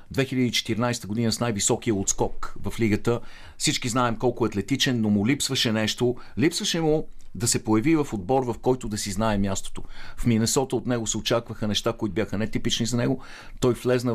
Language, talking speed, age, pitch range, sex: Bulgarian, 180 wpm, 50-69, 105-125 Hz, male